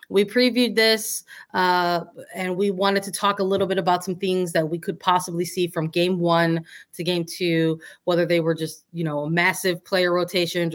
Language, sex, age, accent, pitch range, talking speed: English, female, 20-39, American, 175-225 Hz, 195 wpm